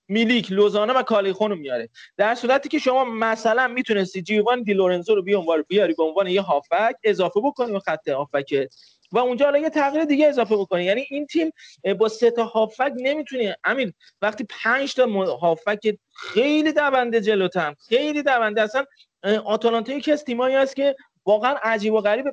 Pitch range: 205-280 Hz